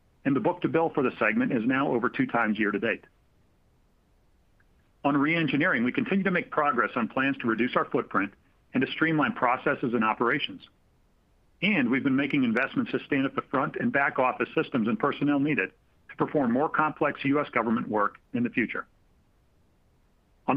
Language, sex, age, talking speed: English, male, 50-69, 180 wpm